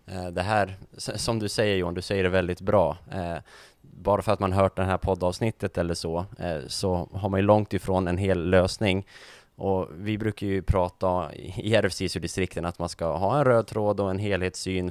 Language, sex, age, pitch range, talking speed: Swedish, male, 20-39, 90-105 Hz, 190 wpm